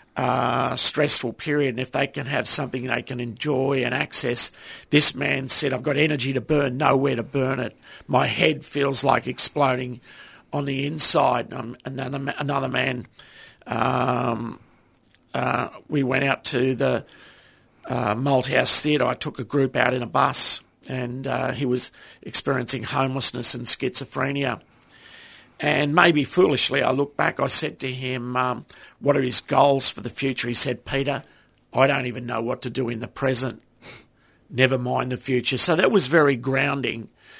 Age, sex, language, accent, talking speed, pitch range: 50-69, male, English, Australian, 170 wpm, 125-145 Hz